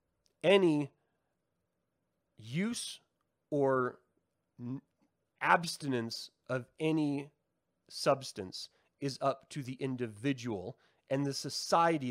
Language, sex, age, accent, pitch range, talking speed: English, male, 30-49, American, 110-150 Hz, 75 wpm